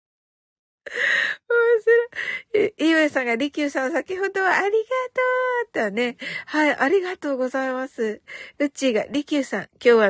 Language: Japanese